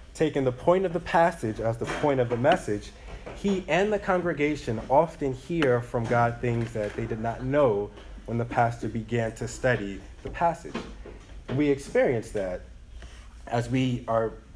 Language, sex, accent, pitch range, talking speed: English, male, American, 110-140 Hz, 170 wpm